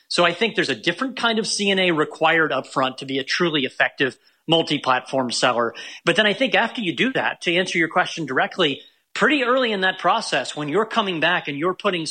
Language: English